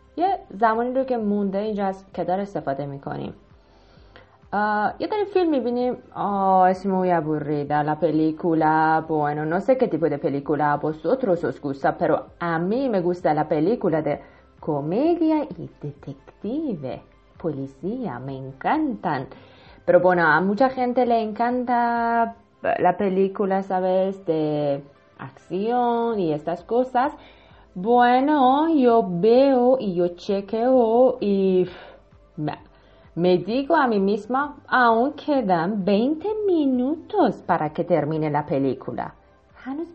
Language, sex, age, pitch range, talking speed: Persian, female, 30-49, 160-245 Hz, 125 wpm